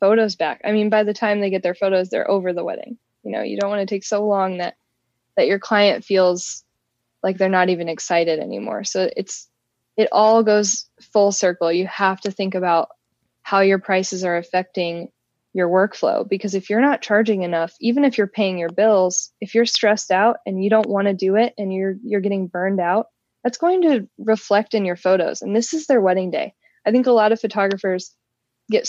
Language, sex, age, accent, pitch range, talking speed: English, female, 10-29, American, 185-220 Hz, 215 wpm